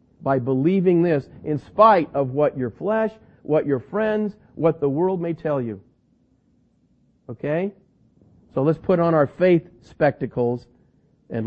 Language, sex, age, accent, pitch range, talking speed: English, male, 50-69, American, 125-155 Hz, 140 wpm